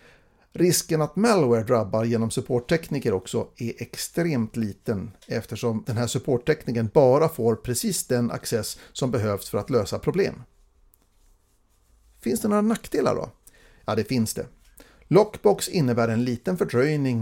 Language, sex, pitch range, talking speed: Swedish, male, 110-145 Hz, 135 wpm